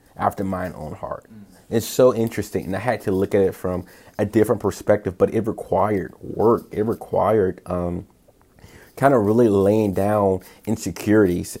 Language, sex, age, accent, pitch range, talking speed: English, male, 30-49, American, 95-110 Hz, 160 wpm